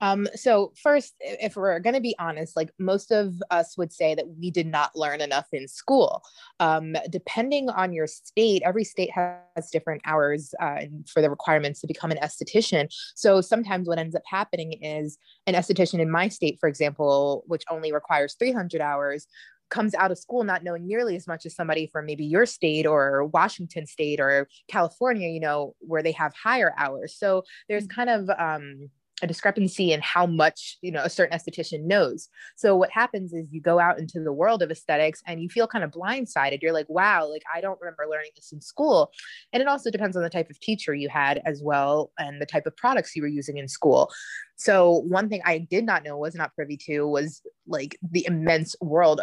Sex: female